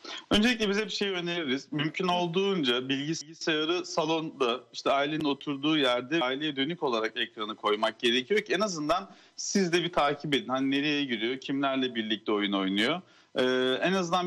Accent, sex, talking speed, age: native, male, 155 wpm, 40-59